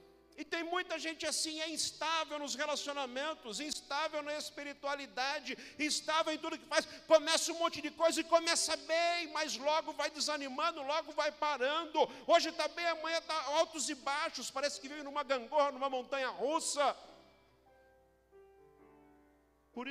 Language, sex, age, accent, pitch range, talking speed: Portuguese, male, 50-69, Brazilian, 185-295 Hz, 150 wpm